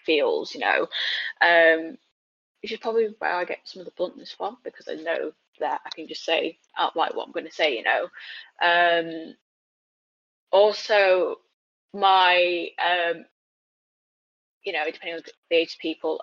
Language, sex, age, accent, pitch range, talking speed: English, female, 10-29, British, 165-220 Hz, 165 wpm